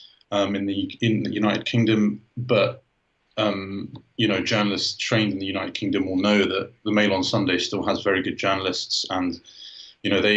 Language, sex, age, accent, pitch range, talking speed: English, male, 20-39, British, 95-110 Hz, 190 wpm